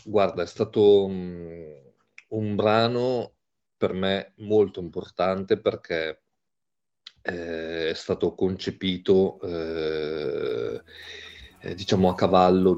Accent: native